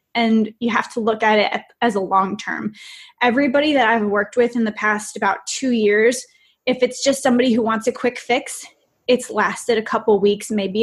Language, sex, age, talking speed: English, female, 20-39, 205 wpm